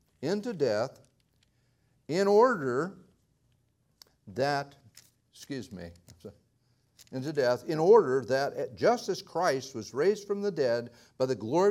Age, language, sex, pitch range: 60-79, English, male, 110-185 Hz